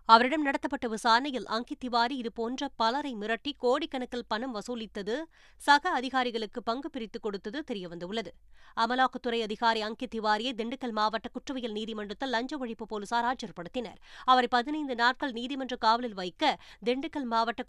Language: Tamil